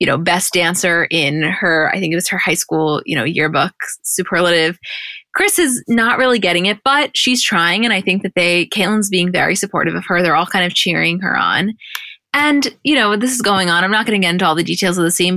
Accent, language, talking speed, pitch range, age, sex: American, English, 245 wpm, 175-200 Hz, 20-39, female